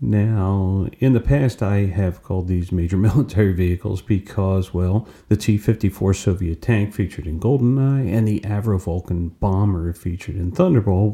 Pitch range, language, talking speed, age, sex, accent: 90-110 Hz, English, 150 wpm, 40-59, male, American